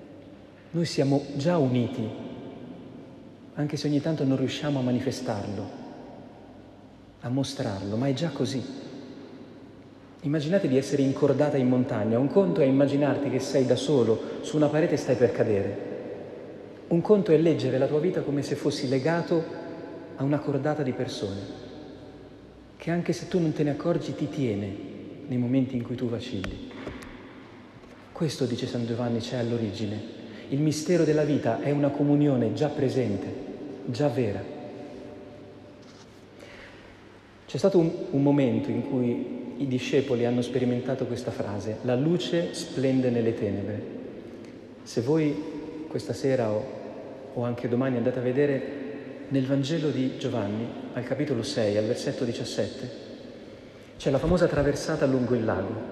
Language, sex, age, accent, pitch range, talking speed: Italian, male, 40-59, native, 120-150 Hz, 145 wpm